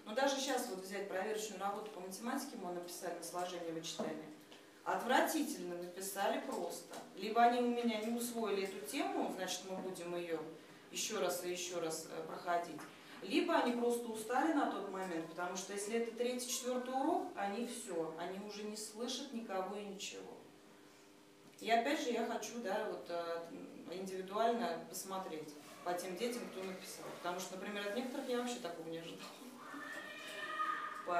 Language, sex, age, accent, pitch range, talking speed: Russian, female, 30-49, native, 180-240 Hz, 160 wpm